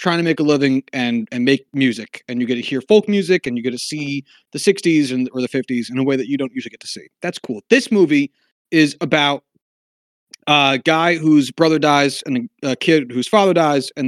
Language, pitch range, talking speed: English, 135-200 Hz, 235 wpm